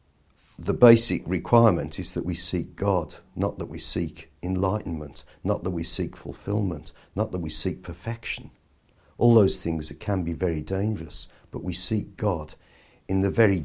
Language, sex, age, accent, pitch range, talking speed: English, male, 50-69, British, 80-105 Hz, 165 wpm